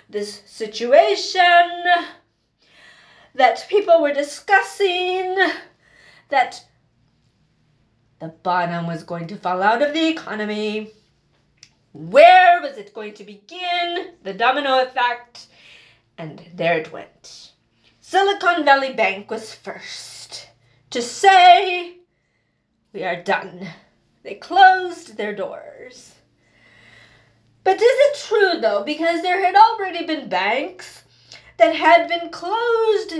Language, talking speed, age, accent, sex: English, 105 wpm, 30-49, American, female